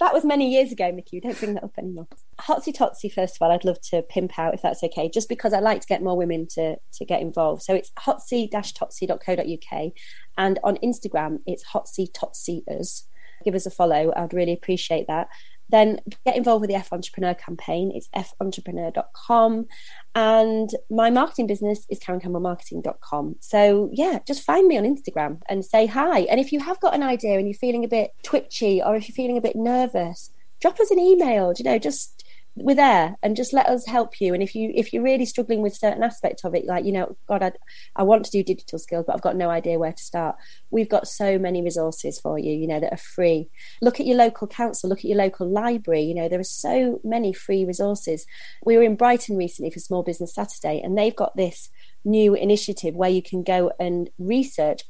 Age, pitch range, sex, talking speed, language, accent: 30-49, 175-230 Hz, female, 220 wpm, English, British